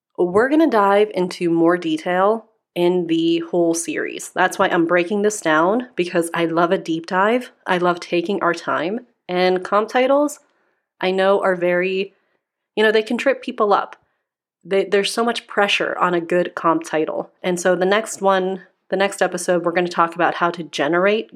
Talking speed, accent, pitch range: 190 wpm, American, 175-220 Hz